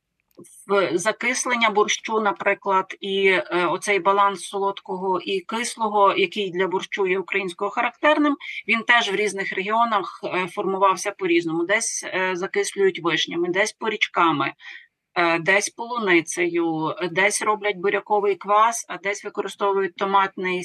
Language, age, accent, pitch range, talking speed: Ukrainian, 30-49, native, 195-235 Hz, 110 wpm